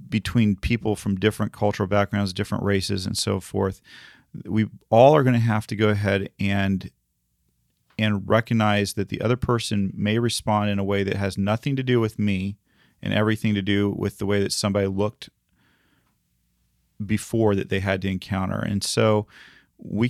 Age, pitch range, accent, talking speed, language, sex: 40-59, 100-135 Hz, American, 175 wpm, English, male